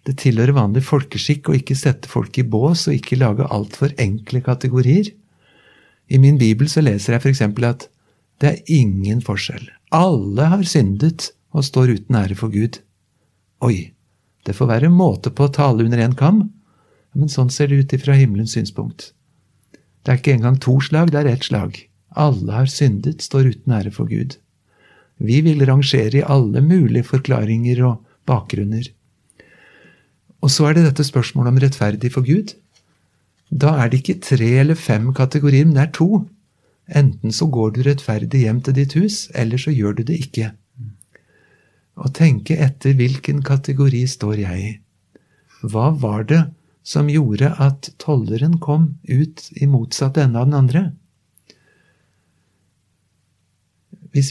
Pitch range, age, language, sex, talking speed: 115-150 Hz, 60-79, English, male, 165 wpm